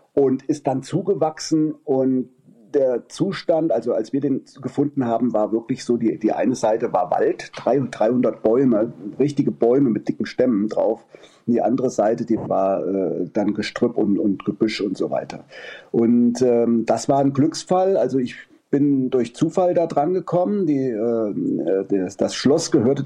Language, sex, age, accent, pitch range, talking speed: German, male, 40-59, German, 115-145 Hz, 165 wpm